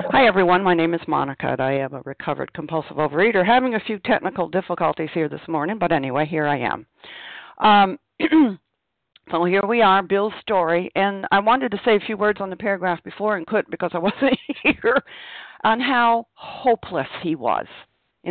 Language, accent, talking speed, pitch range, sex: English, American, 185 wpm, 150-205 Hz, female